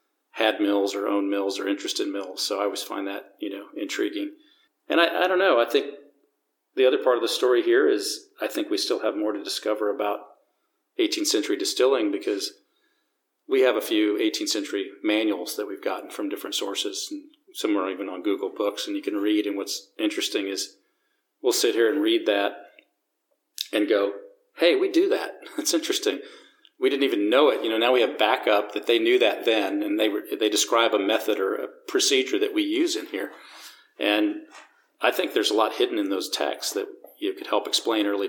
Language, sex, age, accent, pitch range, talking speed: English, male, 40-59, American, 315-395 Hz, 210 wpm